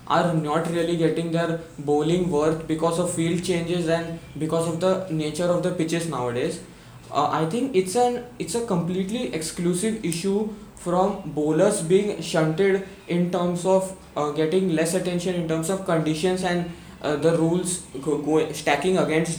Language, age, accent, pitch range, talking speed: English, 20-39, Indian, 160-185 Hz, 165 wpm